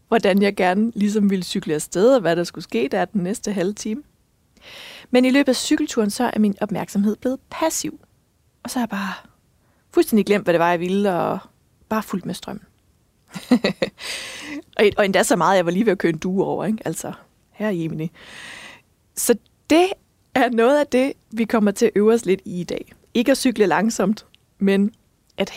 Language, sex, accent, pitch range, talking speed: Danish, female, native, 190-240 Hz, 200 wpm